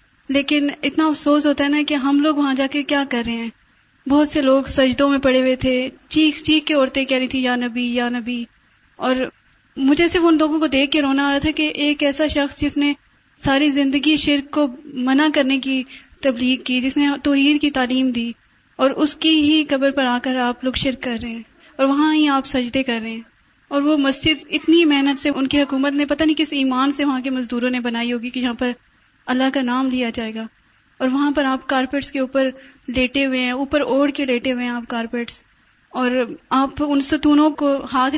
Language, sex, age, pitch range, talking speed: Urdu, female, 30-49, 255-290 Hz, 225 wpm